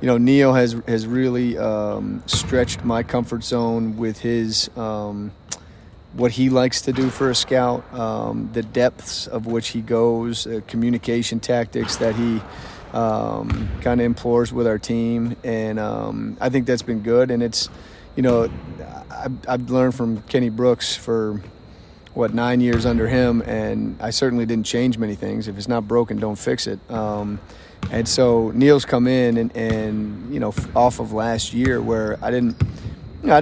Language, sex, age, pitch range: English, male, 30-49, 110-125 Hz